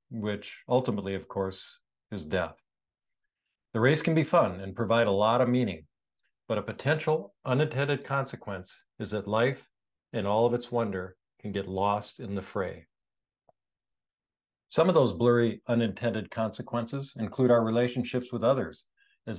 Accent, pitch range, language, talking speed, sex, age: American, 105-135 Hz, English, 150 wpm, male, 50-69